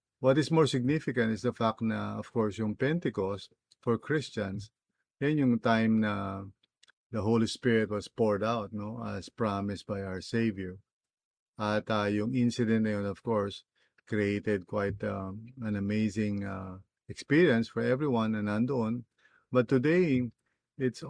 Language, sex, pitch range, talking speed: English, male, 105-120 Hz, 150 wpm